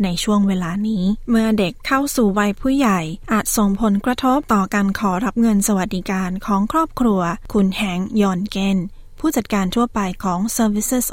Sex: female